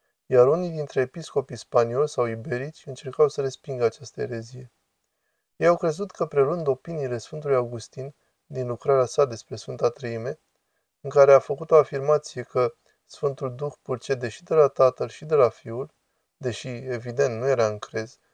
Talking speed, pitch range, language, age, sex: 160 wpm, 120-145 Hz, Romanian, 20-39, male